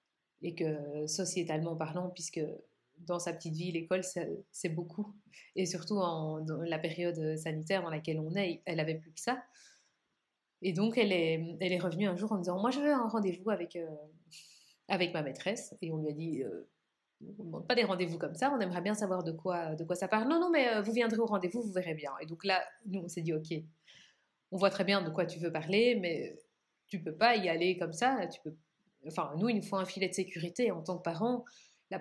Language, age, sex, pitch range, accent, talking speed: French, 30-49, female, 165-200 Hz, French, 235 wpm